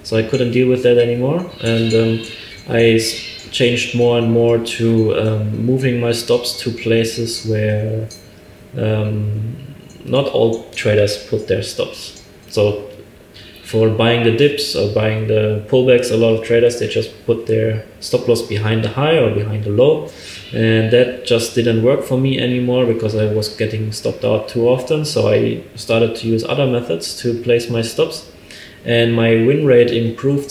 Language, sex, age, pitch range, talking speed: English, male, 20-39, 110-125 Hz, 170 wpm